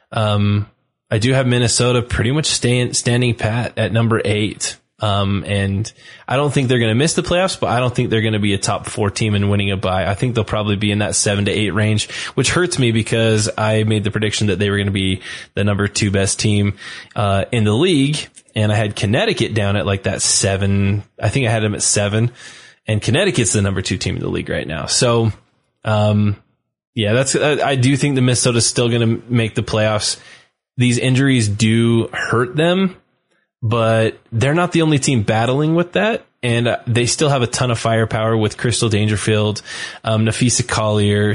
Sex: male